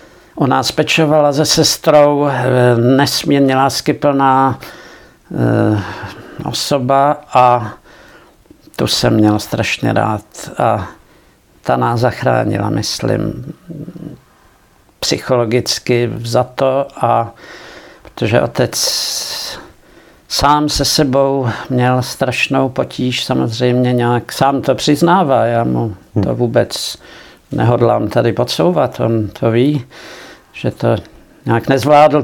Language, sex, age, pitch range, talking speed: Czech, male, 60-79, 120-145 Hz, 90 wpm